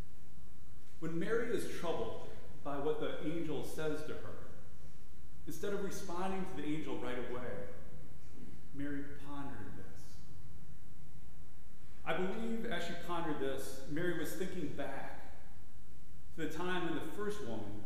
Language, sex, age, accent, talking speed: English, male, 30-49, American, 130 wpm